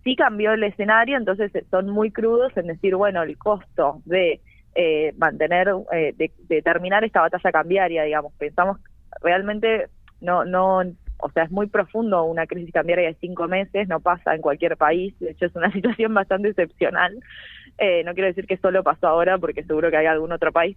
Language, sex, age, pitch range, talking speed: Spanish, female, 20-39, 165-205 Hz, 195 wpm